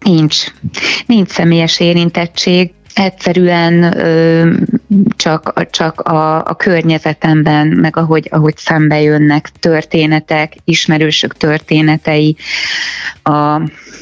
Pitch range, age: 150-170 Hz, 20-39